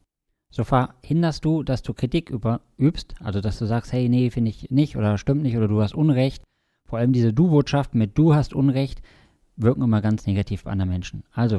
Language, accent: German, German